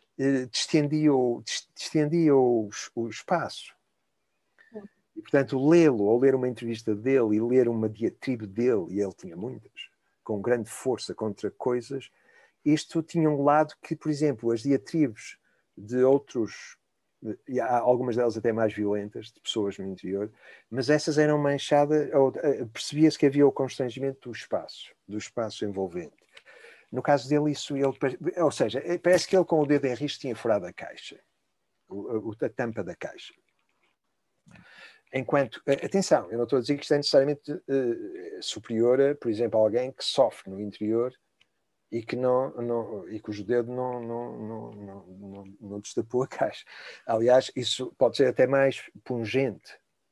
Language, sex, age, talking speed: Portuguese, male, 50-69, 160 wpm